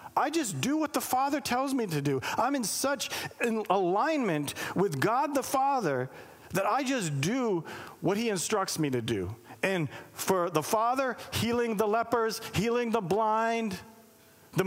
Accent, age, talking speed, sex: American, 40-59, 165 wpm, male